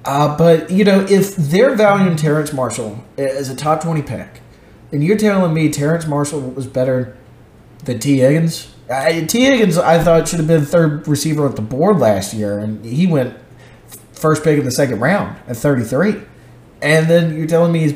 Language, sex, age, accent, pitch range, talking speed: English, male, 30-49, American, 125-160 Hz, 185 wpm